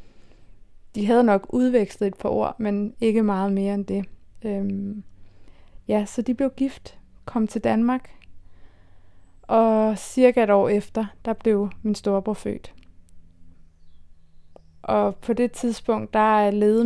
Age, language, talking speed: 20-39, Danish, 135 wpm